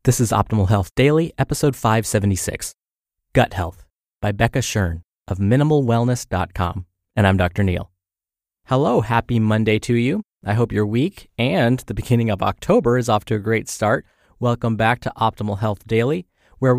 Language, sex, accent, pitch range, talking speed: English, male, American, 100-130 Hz, 160 wpm